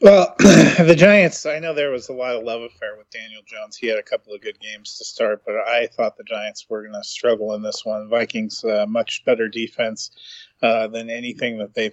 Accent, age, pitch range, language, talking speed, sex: American, 30-49, 105-130 Hz, English, 230 wpm, male